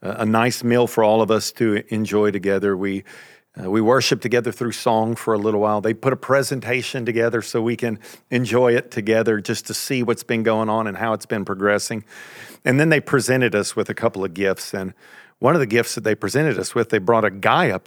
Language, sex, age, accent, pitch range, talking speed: English, male, 40-59, American, 105-120 Hz, 230 wpm